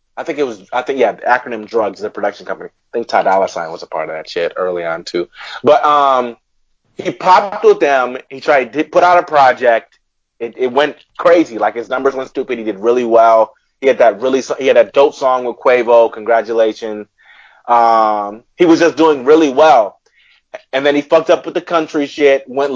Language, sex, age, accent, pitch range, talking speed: English, male, 30-49, American, 120-155 Hz, 215 wpm